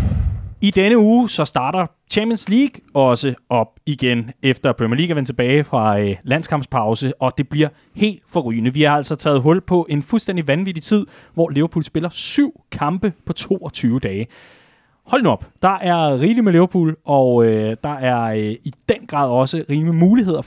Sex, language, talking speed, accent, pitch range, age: male, Danish, 180 wpm, native, 125-175 Hz, 30-49